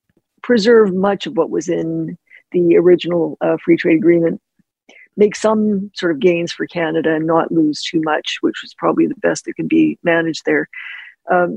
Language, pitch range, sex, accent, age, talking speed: English, 165-205 Hz, female, American, 50-69, 180 wpm